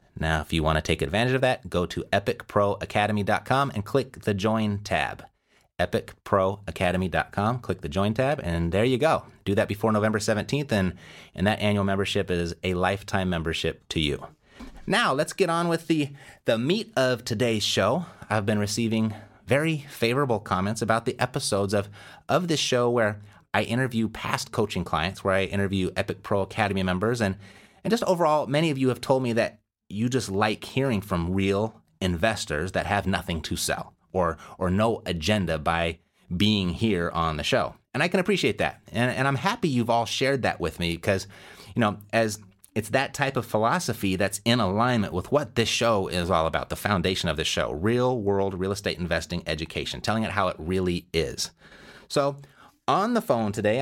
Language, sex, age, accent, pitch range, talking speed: English, male, 30-49, American, 95-120 Hz, 185 wpm